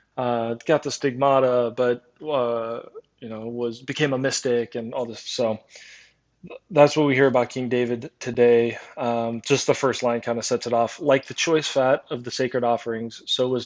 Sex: male